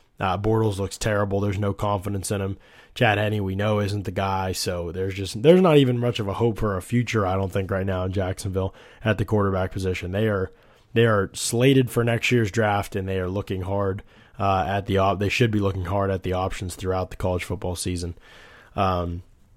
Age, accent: 20-39, American